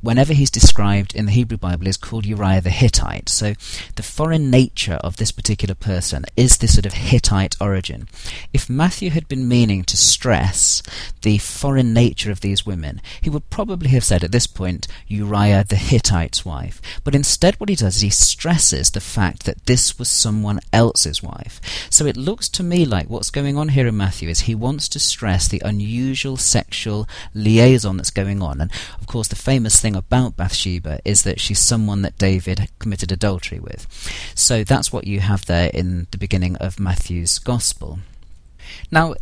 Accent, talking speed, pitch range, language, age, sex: British, 185 wpm, 90-120 Hz, English, 40-59, male